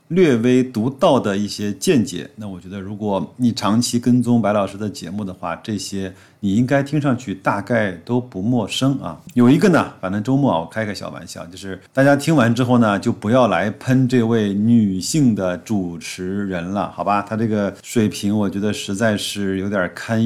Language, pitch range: Chinese, 100-125 Hz